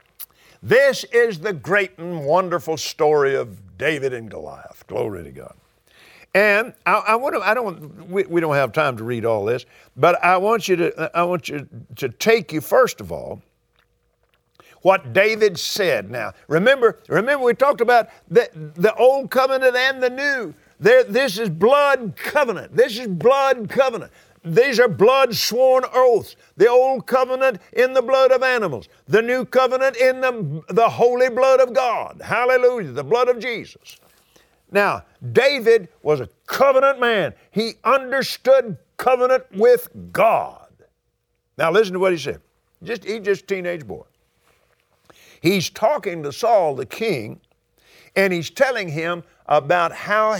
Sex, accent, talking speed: male, American, 155 wpm